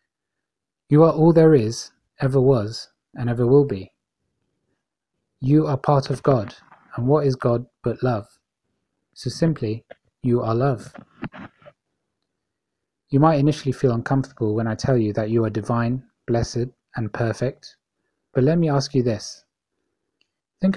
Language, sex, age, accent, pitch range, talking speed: English, male, 30-49, British, 115-140 Hz, 145 wpm